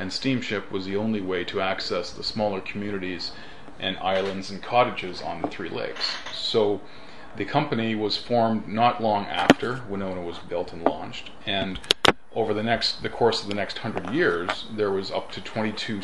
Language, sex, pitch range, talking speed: English, male, 95-110 Hz, 180 wpm